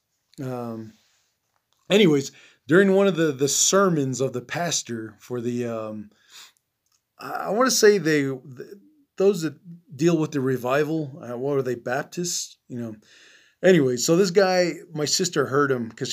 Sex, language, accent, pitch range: male, English, American, 120-165 Hz